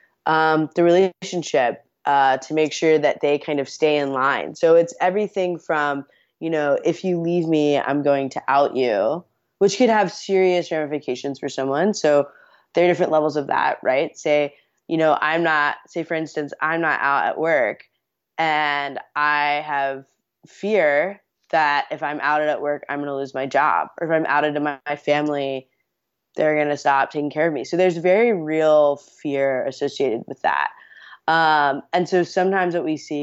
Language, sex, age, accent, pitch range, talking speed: English, female, 20-39, American, 145-180 Hz, 190 wpm